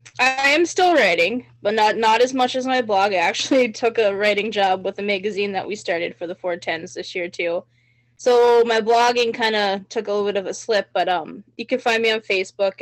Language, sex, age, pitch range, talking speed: English, female, 10-29, 180-220 Hz, 235 wpm